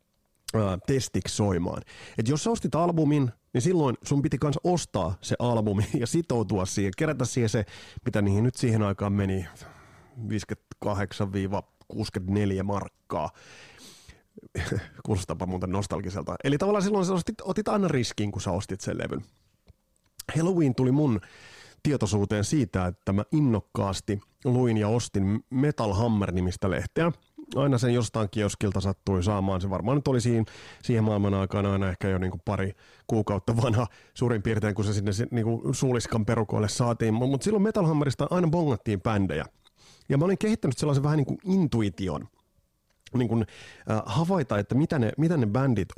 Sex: male